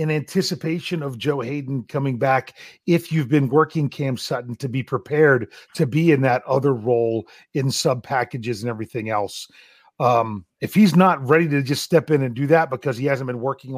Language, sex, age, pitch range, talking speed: English, male, 40-59, 130-165 Hz, 195 wpm